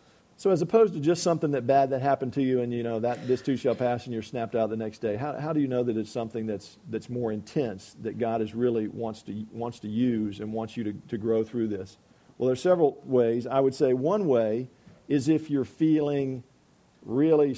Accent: American